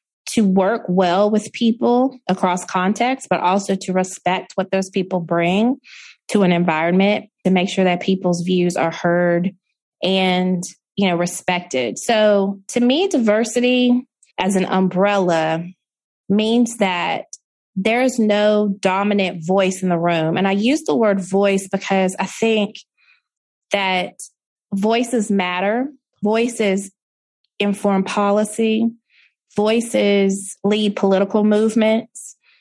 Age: 20-39